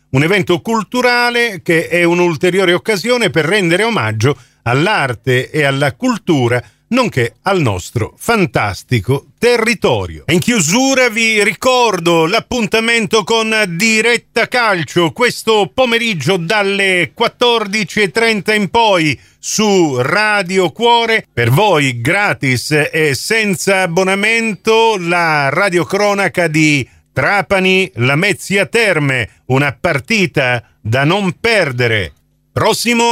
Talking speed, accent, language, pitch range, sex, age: 100 wpm, native, Italian, 140-220 Hz, male, 40-59